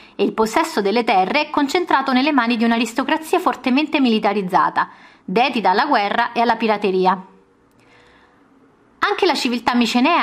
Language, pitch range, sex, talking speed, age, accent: Italian, 195-295 Hz, female, 135 wpm, 30-49, native